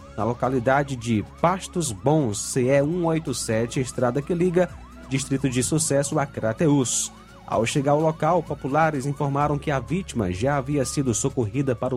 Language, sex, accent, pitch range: Portuguese, male, Brazilian, 115-160 Hz